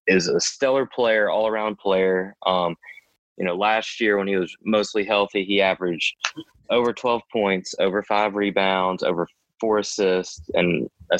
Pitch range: 95-110 Hz